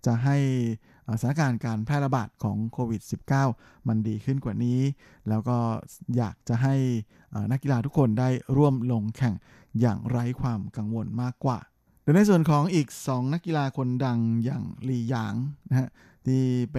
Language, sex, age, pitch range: Thai, male, 20-39, 115-135 Hz